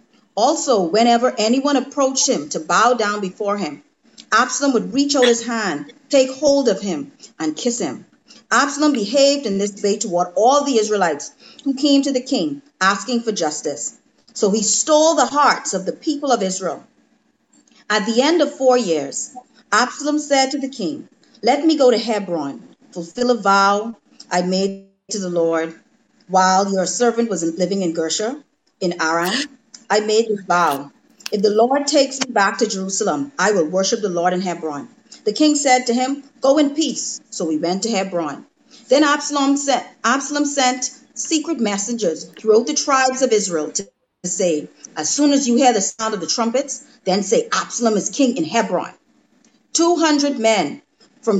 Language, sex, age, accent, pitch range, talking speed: English, female, 40-59, American, 195-270 Hz, 175 wpm